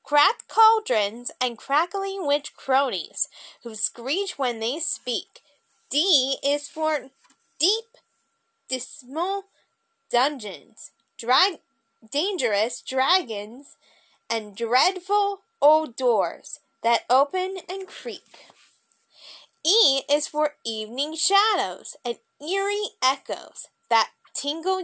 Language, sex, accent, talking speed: English, female, American, 90 wpm